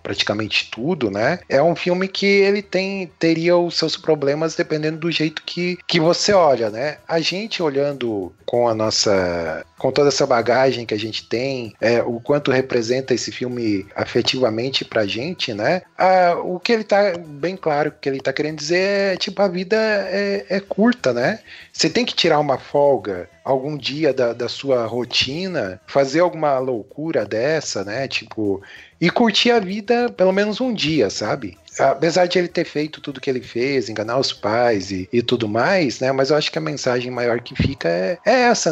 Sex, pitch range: male, 125-175 Hz